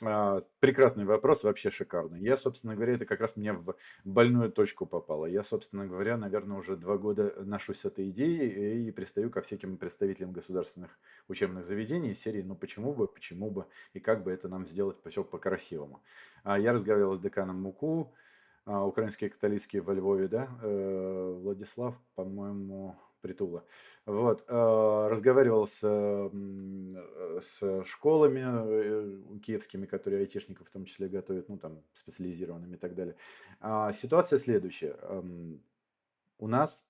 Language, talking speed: Ukrainian, 135 wpm